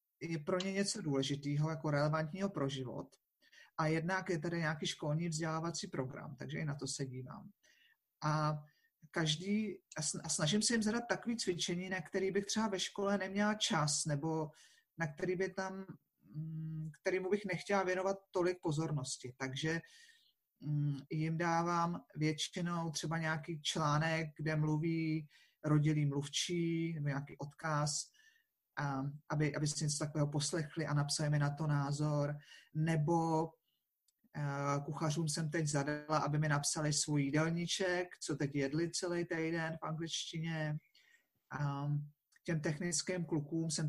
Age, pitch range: 40-59, 150-185 Hz